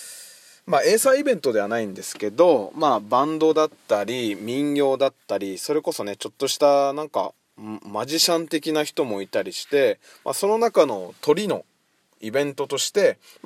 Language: Japanese